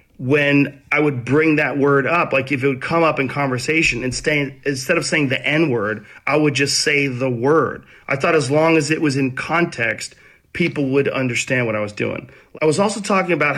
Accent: American